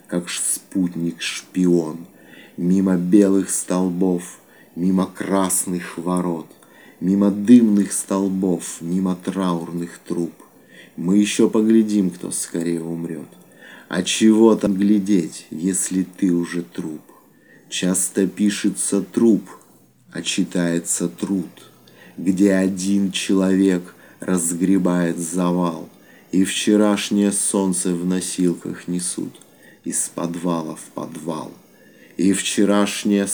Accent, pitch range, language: native, 90-100 Hz, Russian